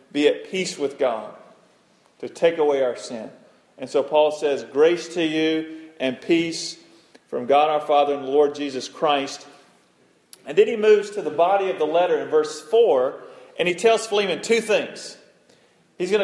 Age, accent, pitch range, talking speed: 40-59, American, 150-215 Hz, 175 wpm